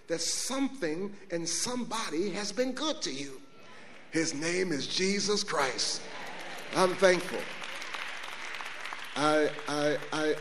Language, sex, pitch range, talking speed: English, male, 170-225 Hz, 110 wpm